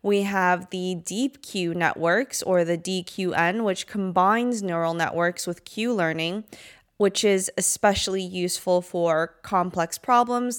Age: 20-39